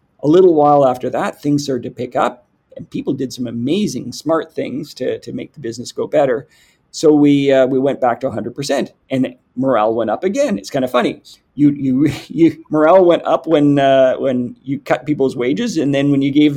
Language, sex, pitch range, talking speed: English, male, 130-160 Hz, 215 wpm